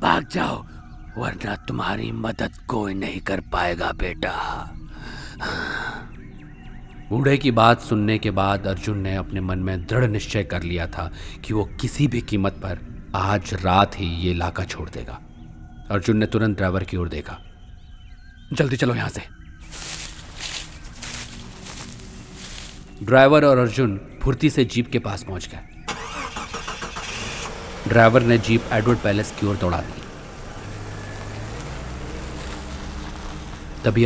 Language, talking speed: Hindi, 120 wpm